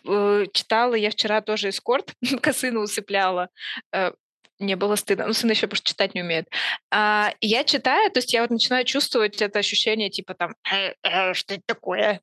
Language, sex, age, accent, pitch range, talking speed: Russian, female, 20-39, native, 195-235 Hz, 165 wpm